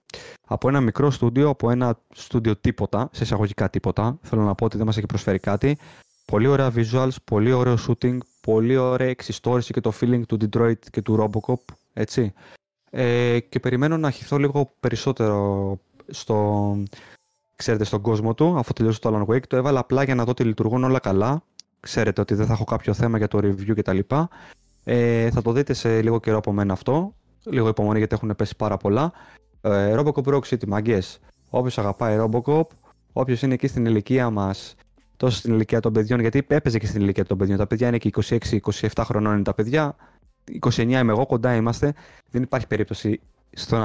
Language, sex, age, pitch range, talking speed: Greek, male, 20-39, 105-125 Hz, 180 wpm